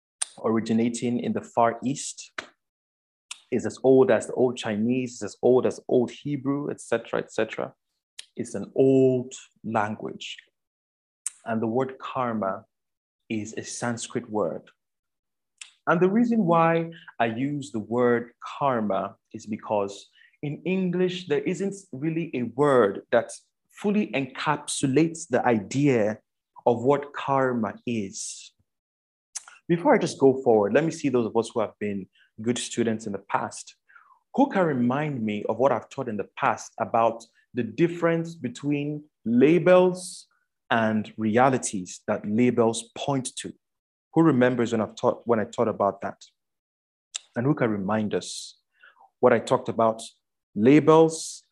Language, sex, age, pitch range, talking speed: English, male, 30-49, 110-145 Hz, 135 wpm